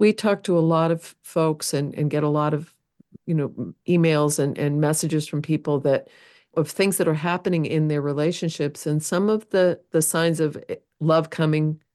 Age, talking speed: 50-69, 195 wpm